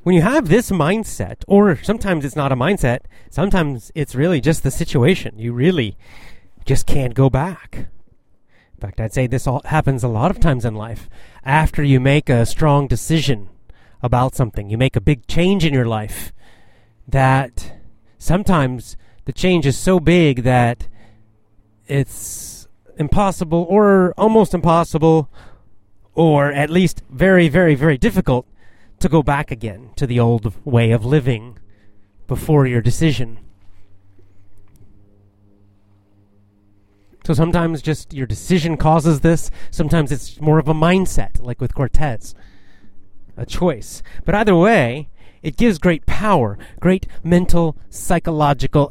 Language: English